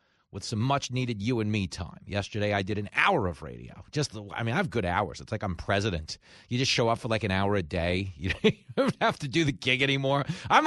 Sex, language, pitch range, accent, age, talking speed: male, English, 100-145 Hz, American, 30-49, 260 wpm